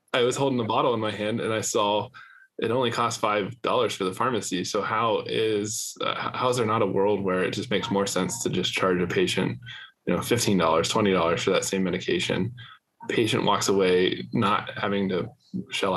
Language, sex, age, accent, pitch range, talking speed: English, male, 10-29, American, 95-120 Hz, 215 wpm